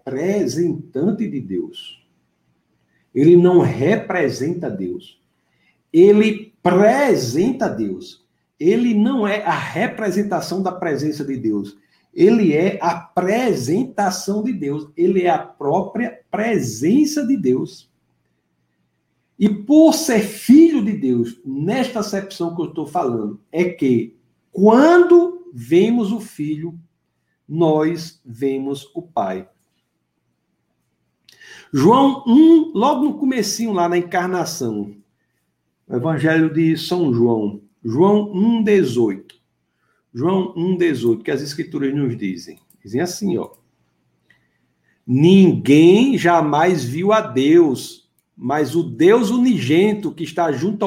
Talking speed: 105 wpm